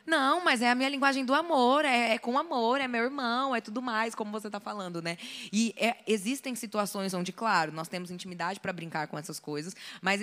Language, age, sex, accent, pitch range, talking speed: Portuguese, 20-39, female, Brazilian, 175-245 Hz, 215 wpm